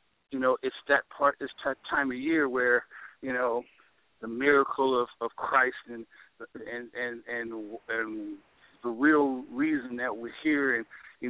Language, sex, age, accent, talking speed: English, male, 50-69, American, 165 wpm